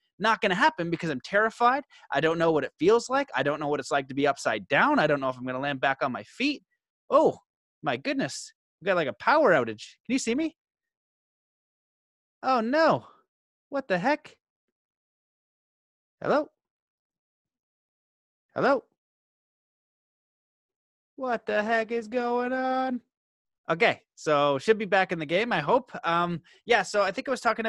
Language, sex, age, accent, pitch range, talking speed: English, male, 30-49, American, 150-210 Hz, 175 wpm